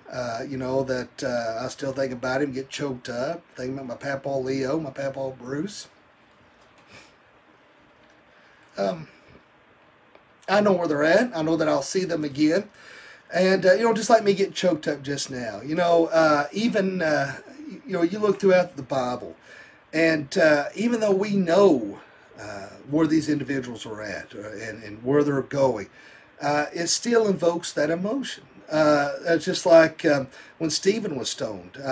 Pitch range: 135-175 Hz